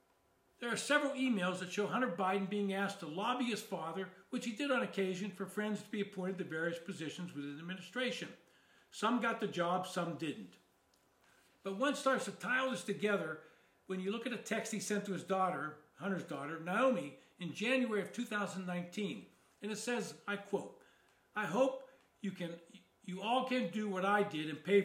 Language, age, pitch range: English, 60-79, 185-230 Hz